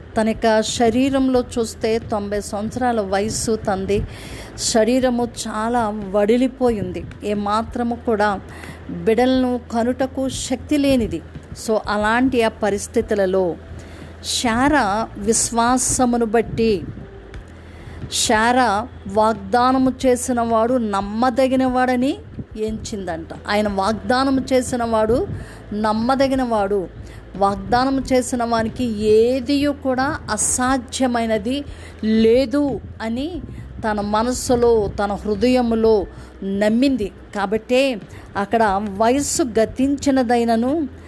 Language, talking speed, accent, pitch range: Telugu, 75 wpm, native, 210-255 Hz